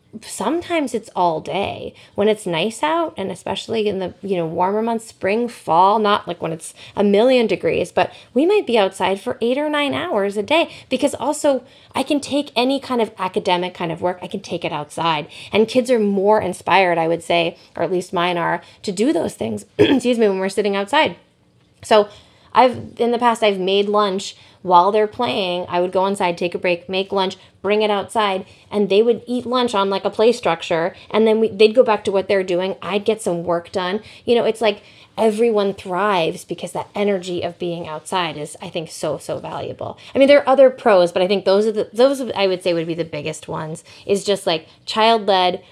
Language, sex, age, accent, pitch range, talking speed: English, female, 20-39, American, 180-225 Hz, 220 wpm